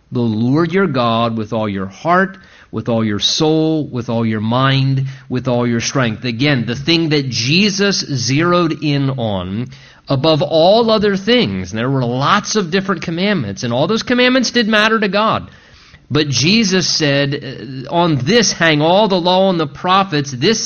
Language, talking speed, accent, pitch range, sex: English, 170 wpm, American, 135-185 Hz, male